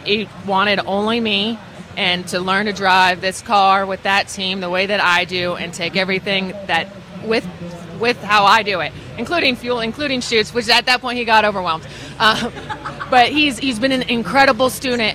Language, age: English, 20-39